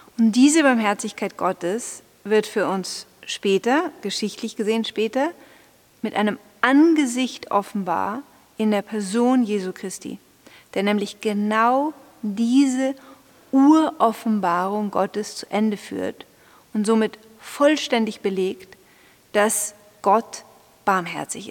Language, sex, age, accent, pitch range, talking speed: German, female, 40-59, German, 205-255 Hz, 100 wpm